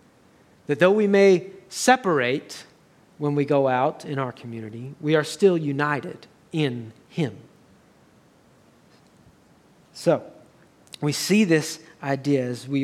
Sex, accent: male, American